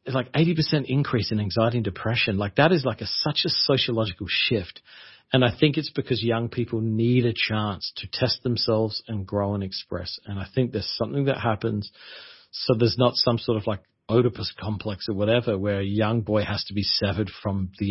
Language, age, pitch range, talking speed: English, 40-59, 105-135 Hz, 210 wpm